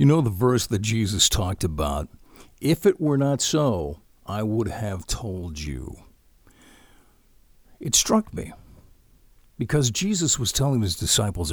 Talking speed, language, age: 140 wpm, English, 50-69